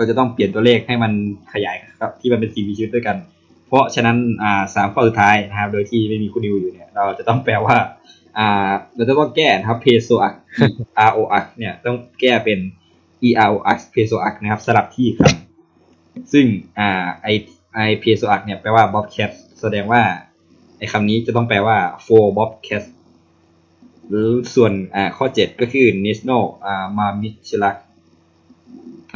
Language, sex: Thai, male